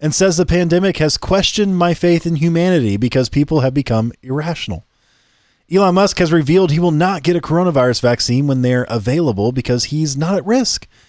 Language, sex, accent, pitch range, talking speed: English, male, American, 125-175 Hz, 185 wpm